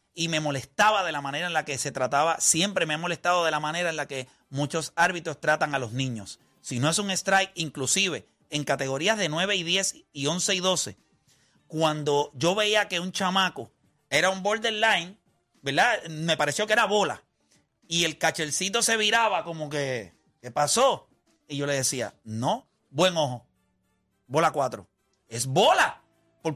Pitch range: 145-195 Hz